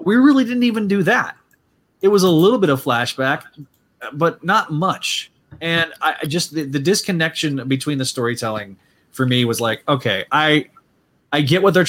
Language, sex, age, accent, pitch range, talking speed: English, male, 30-49, American, 120-150 Hz, 180 wpm